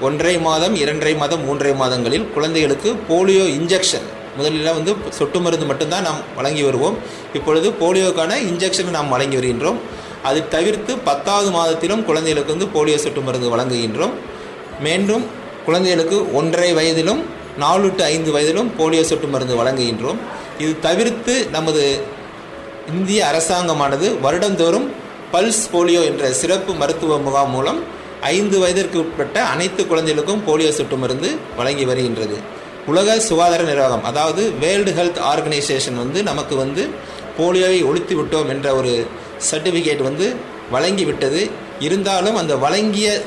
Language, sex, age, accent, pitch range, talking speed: Tamil, male, 30-49, native, 145-185 Hz, 125 wpm